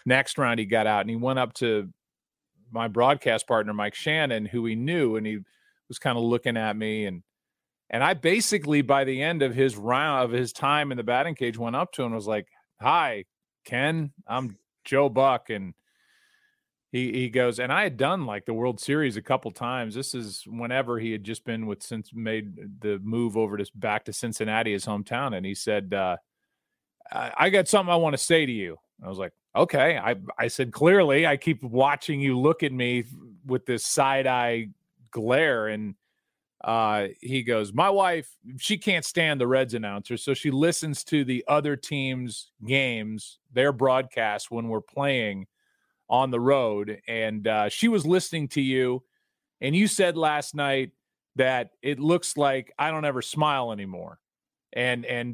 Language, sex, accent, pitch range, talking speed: English, male, American, 115-145 Hz, 190 wpm